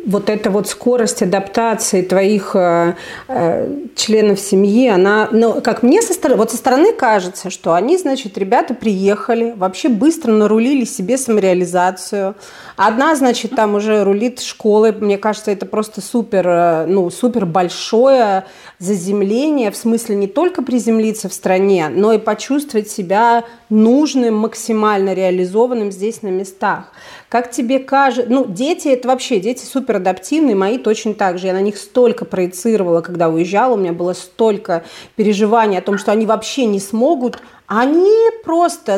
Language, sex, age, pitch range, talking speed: Russian, female, 30-49, 200-245 Hz, 150 wpm